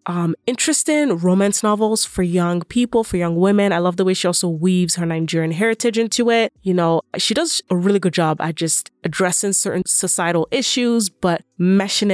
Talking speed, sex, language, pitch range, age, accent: 185 wpm, female, English, 170-210 Hz, 20-39, American